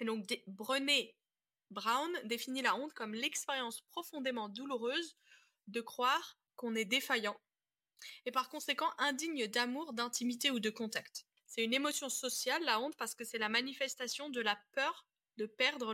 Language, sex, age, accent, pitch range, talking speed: French, female, 20-39, French, 215-275 Hz, 155 wpm